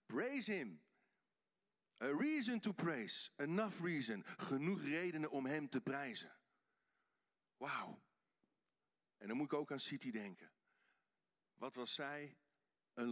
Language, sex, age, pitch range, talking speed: Dutch, male, 50-69, 140-185 Hz, 125 wpm